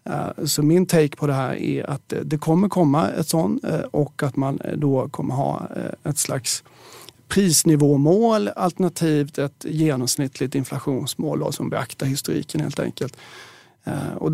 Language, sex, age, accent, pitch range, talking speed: Swedish, male, 30-49, native, 135-165 Hz, 135 wpm